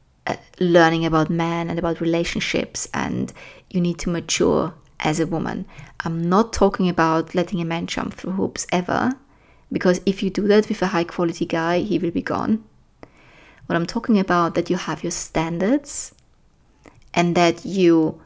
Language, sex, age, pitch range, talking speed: English, female, 20-39, 170-205 Hz, 170 wpm